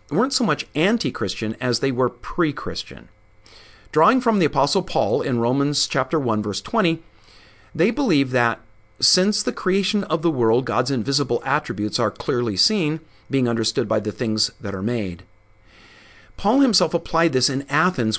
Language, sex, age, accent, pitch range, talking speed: English, male, 50-69, American, 110-160 Hz, 160 wpm